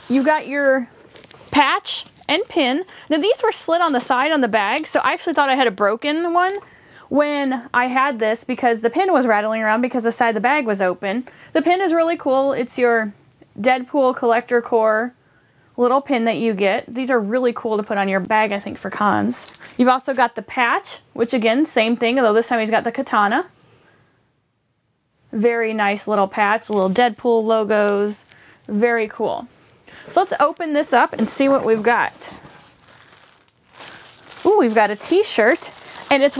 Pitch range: 215-275 Hz